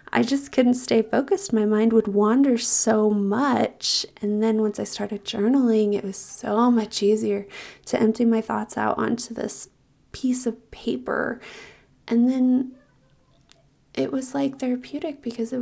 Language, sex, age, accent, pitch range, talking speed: English, female, 20-39, American, 215-240 Hz, 155 wpm